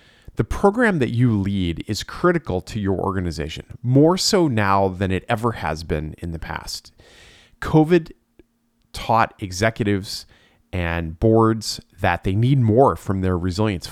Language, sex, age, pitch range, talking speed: English, male, 30-49, 90-120 Hz, 140 wpm